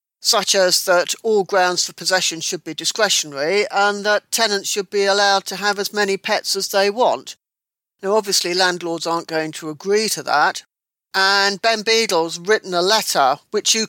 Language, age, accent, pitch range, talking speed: English, 50-69, British, 180-230 Hz, 175 wpm